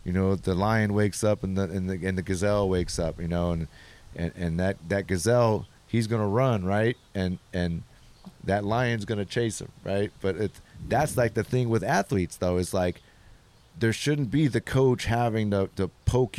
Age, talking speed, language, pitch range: 30-49, 200 wpm, English, 95-125 Hz